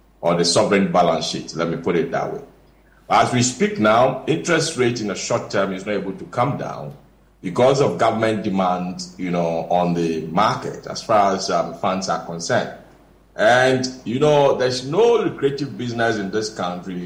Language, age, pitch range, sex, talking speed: English, 50-69, 95-125 Hz, male, 185 wpm